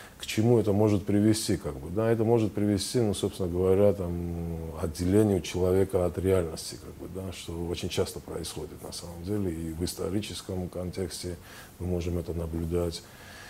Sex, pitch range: male, 90-105 Hz